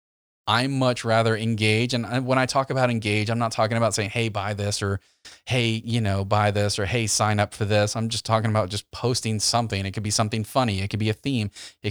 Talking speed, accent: 240 wpm, American